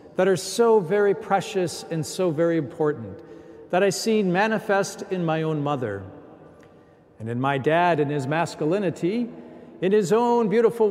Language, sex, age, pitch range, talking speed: English, male, 50-69, 145-210 Hz, 155 wpm